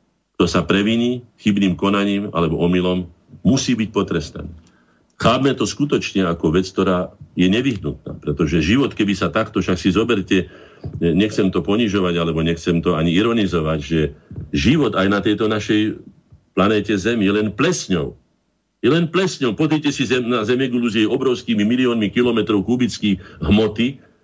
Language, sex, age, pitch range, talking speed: Slovak, male, 50-69, 90-110 Hz, 150 wpm